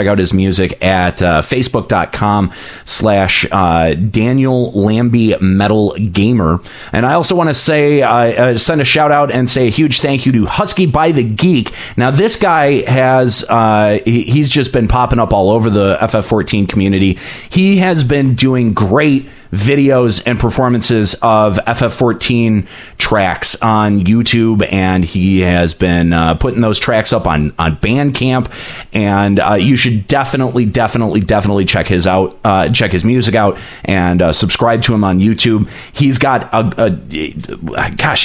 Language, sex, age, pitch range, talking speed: English, male, 30-49, 95-130 Hz, 160 wpm